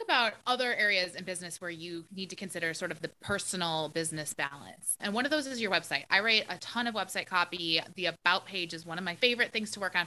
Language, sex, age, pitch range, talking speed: English, female, 20-39, 175-220 Hz, 250 wpm